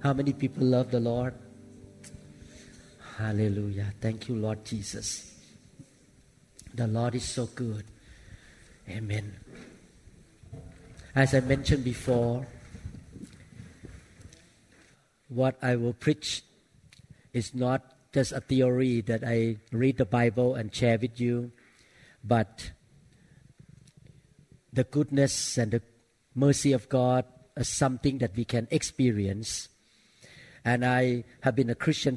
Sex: male